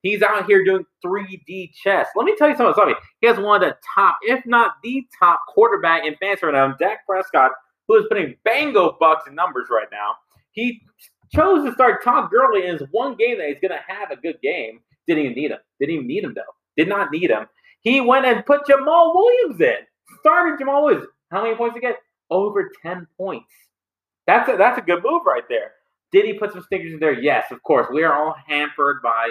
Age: 30-49